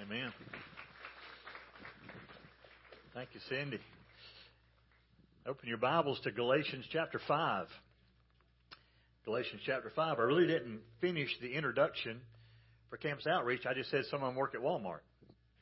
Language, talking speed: English, 125 wpm